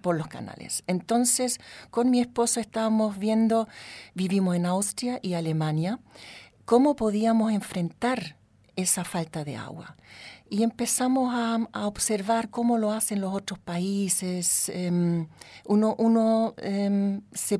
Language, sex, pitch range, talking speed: Spanish, female, 165-220 Hz, 120 wpm